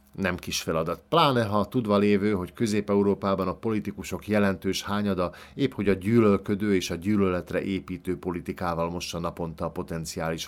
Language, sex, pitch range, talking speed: Hungarian, male, 90-110 Hz, 150 wpm